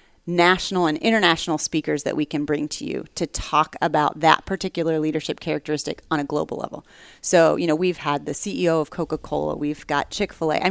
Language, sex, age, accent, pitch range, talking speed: English, female, 30-49, American, 155-195 Hz, 190 wpm